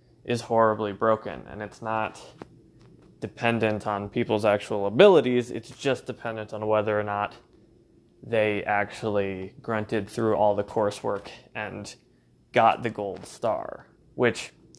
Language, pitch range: English, 105-125 Hz